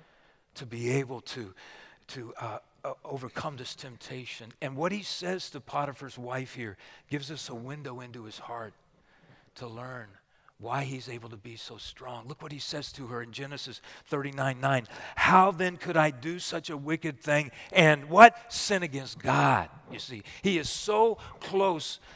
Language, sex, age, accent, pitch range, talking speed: English, male, 40-59, American, 125-150 Hz, 170 wpm